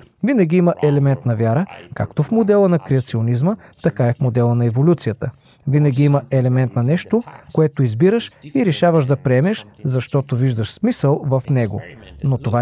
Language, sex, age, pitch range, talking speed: Bulgarian, male, 40-59, 125-170 Hz, 160 wpm